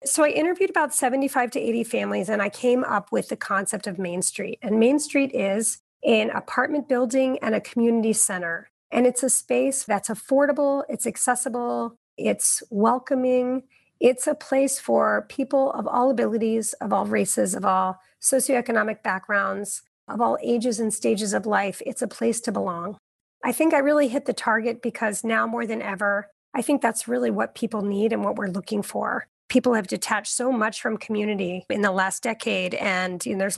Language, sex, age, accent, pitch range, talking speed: English, female, 30-49, American, 210-265 Hz, 185 wpm